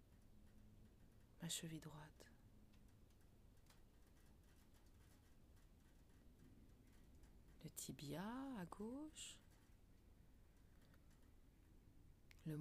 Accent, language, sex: French, French, female